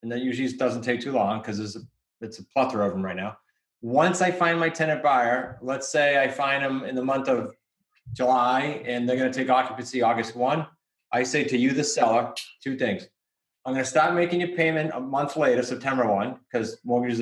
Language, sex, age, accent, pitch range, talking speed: English, male, 30-49, American, 125-160 Hz, 215 wpm